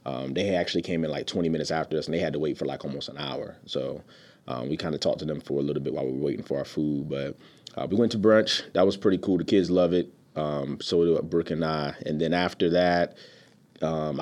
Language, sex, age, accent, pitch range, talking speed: English, male, 30-49, American, 75-90 Hz, 270 wpm